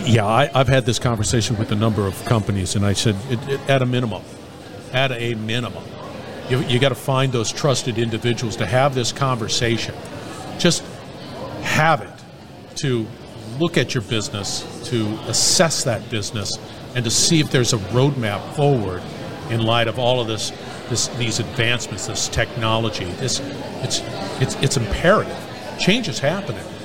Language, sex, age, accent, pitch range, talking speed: English, male, 50-69, American, 115-140 Hz, 165 wpm